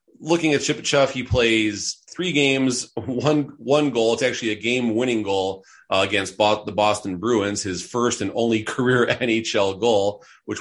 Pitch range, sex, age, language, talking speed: 95-120 Hz, male, 30-49, English, 170 wpm